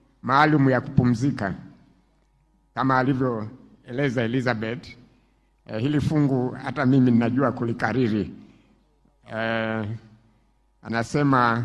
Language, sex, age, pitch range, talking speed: Swahili, male, 60-79, 125-155 Hz, 75 wpm